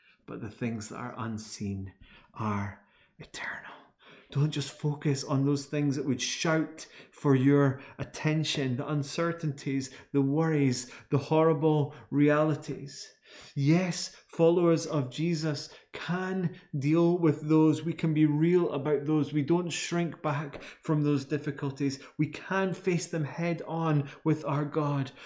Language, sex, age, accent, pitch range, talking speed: English, male, 30-49, British, 125-155 Hz, 135 wpm